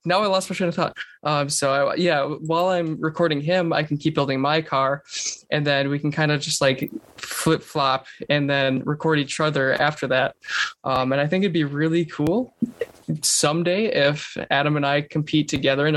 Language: English